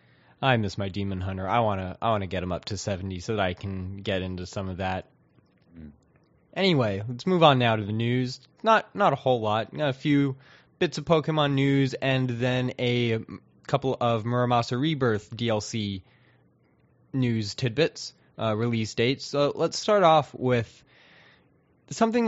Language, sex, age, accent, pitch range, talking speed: English, male, 20-39, American, 110-155 Hz, 170 wpm